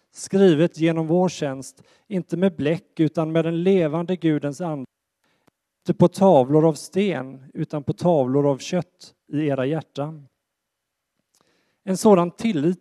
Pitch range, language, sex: 140-180 Hz, Swedish, male